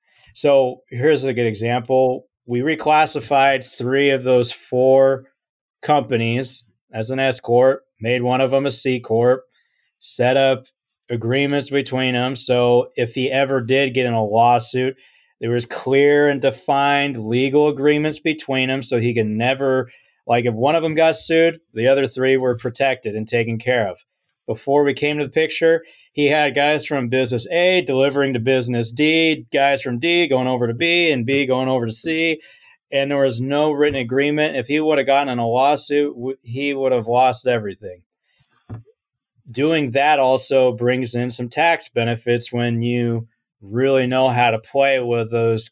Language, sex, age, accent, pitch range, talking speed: English, male, 30-49, American, 120-145 Hz, 170 wpm